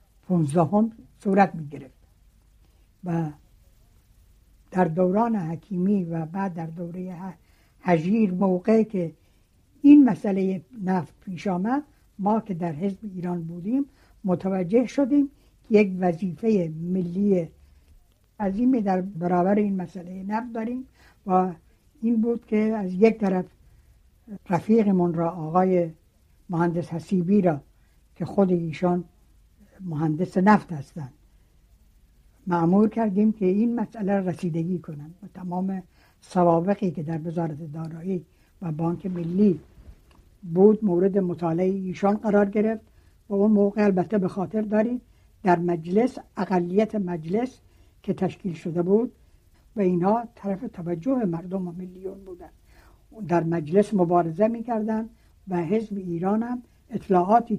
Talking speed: 120 wpm